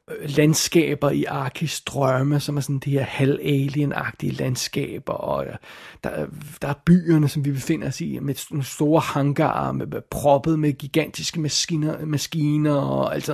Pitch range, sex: 140-160 Hz, male